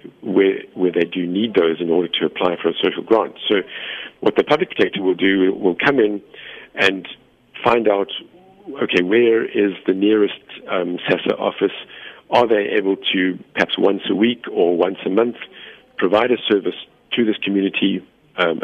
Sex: male